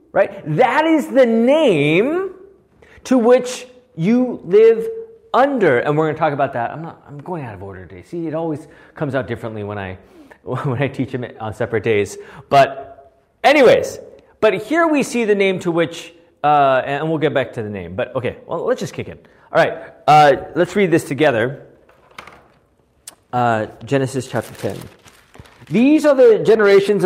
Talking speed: 175 wpm